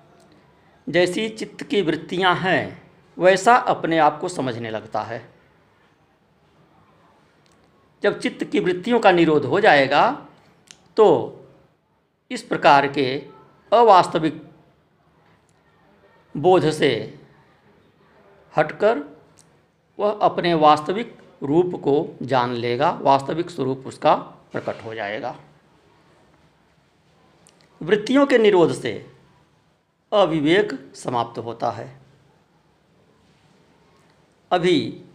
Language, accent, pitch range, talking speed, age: Hindi, native, 140-175 Hz, 85 wpm, 50-69